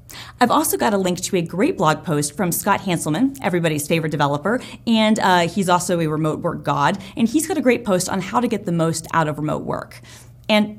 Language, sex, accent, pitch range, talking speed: English, female, American, 160-210 Hz, 230 wpm